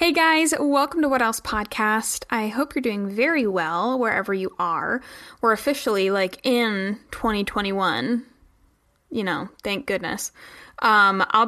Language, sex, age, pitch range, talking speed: English, female, 20-39, 195-250 Hz, 140 wpm